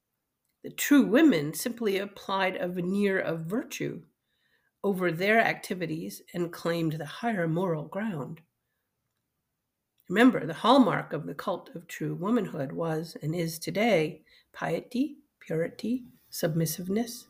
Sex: female